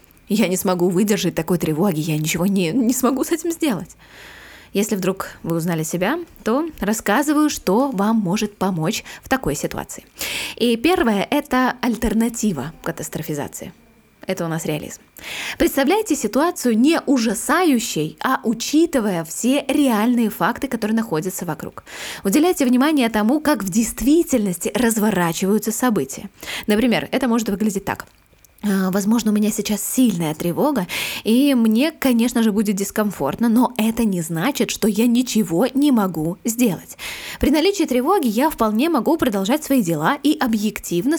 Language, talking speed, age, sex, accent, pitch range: Russian, 140 wpm, 20-39, female, native, 190-260 Hz